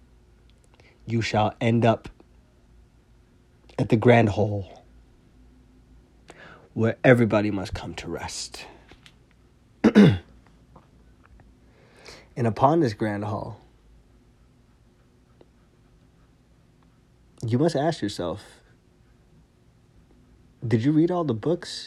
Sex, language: male, English